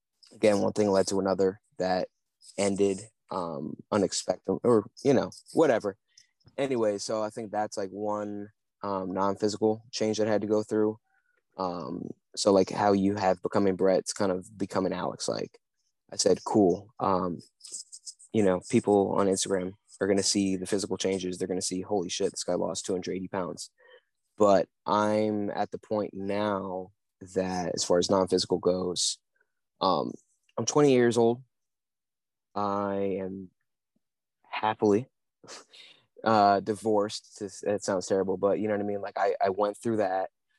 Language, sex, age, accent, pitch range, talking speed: English, male, 20-39, American, 95-110 Hz, 160 wpm